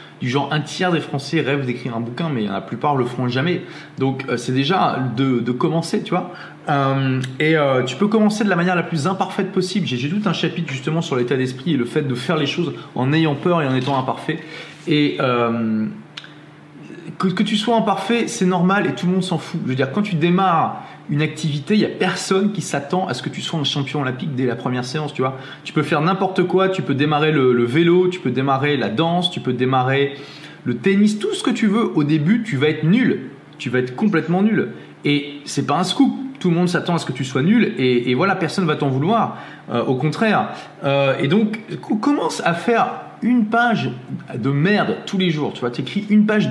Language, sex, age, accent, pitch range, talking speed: French, male, 20-39, French, 135-190 Hz, 230 wpm